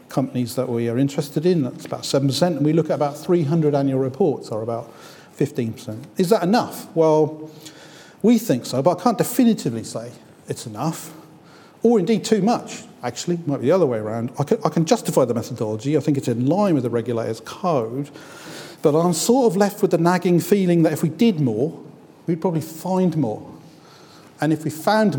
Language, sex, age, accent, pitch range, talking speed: English, male, 40-59, British, 130-165 Hz, 200 wpm